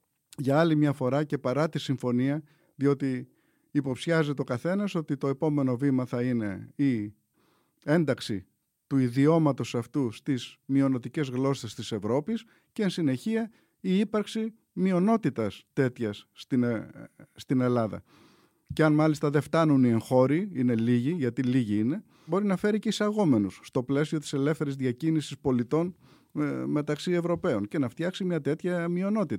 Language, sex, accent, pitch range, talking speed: Greek, male, native, 130-180 Hz, 140 wpm